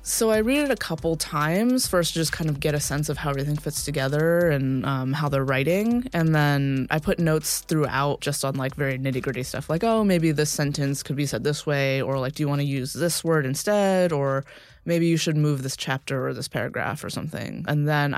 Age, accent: 20-39, American